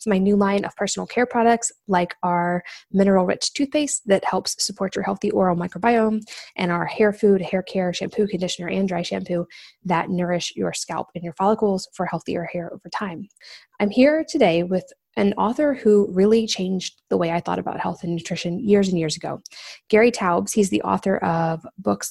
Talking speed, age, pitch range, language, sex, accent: 185 wpm, 20-39, 175-210 Hz, English, female, American